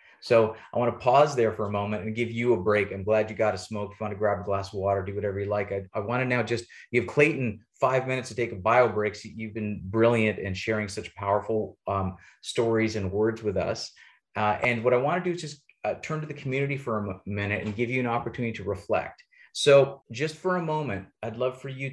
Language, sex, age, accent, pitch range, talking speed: English, male, 30-49, American, 100-130 Hz, 245 wpm